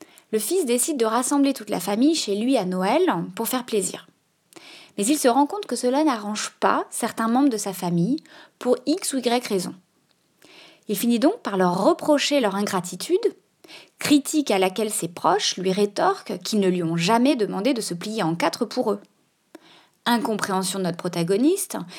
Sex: female